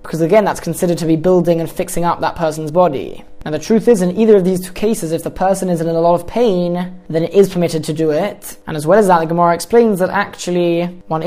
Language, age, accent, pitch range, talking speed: English, 20-39, British, 165-195 Hz, 260 wpm